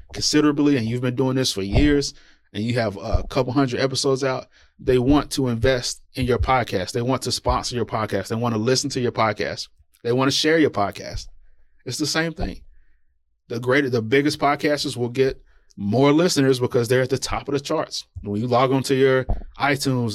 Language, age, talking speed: English, 20-39, 210 wpm